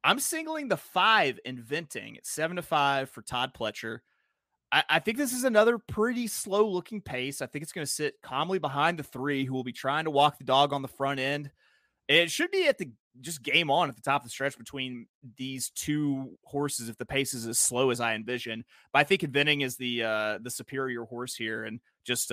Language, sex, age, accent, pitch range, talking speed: English, male, 30-49, American, 125-195 Hz, 225 wpm